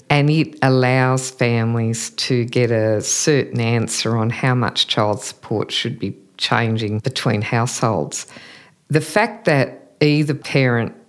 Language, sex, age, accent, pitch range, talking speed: English, female, 50-69, Australian, 110-140 Hz, 130 wpm